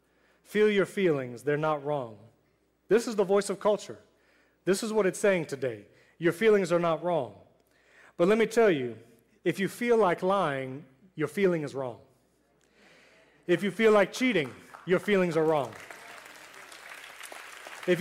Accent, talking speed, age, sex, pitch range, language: American, 155 wpm, 30-49, male, 155-205 Hz, English